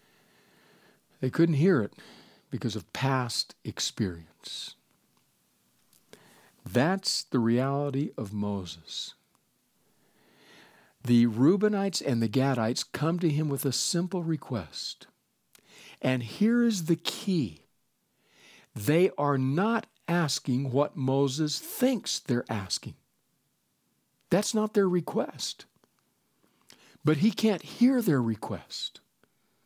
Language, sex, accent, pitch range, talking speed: English, male, American, 120-180 Hz, 100 wpm